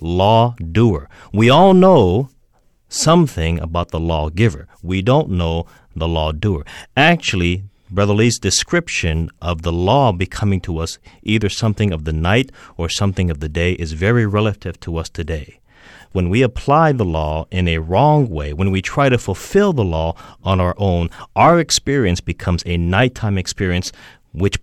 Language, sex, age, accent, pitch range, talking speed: English, male, 40-59, American, 85-115 Hz, 160 wpm